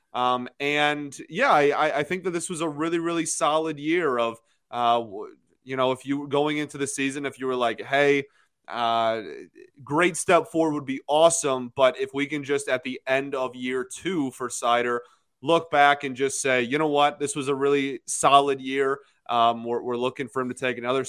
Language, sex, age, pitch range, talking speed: English, male, 20-39, 125-155 Hz, 210 wpm